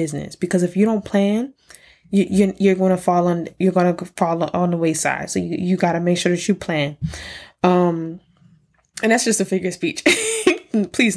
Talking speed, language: 200 wpm, English